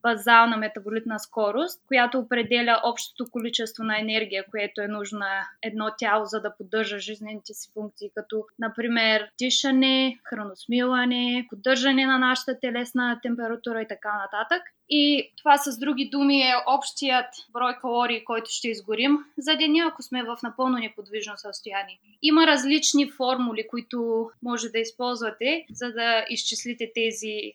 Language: Bulgarian